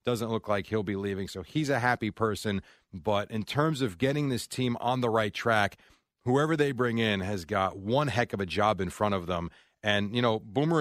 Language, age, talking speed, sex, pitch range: English, 40-59, 230 wpm, male, 105-130 Hz